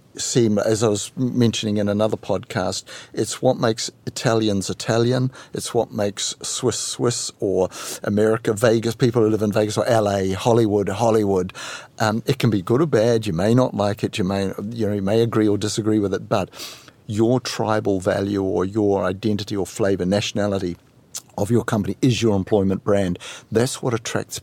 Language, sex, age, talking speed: English, male, 60-79, 180 wpm